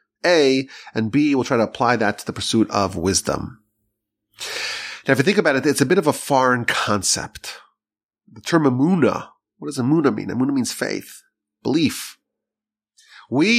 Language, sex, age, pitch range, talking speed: English, male, 30-49, 105-150 Hz, 170 wpm